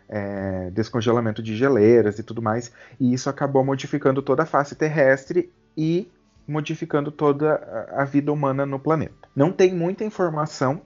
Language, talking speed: Portuguese, 145 wpm